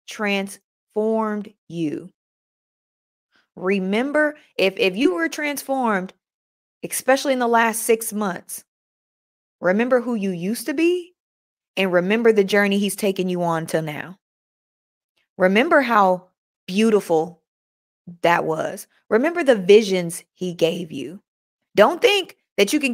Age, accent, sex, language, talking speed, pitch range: 20-39, American, female, English, 120 wpm, 185-260 Hz